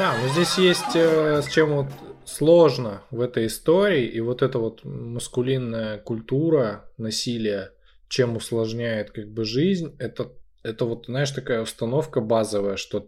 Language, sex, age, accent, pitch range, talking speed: Russian, male, 10-29, native, 105-135 Hz, 150 wpm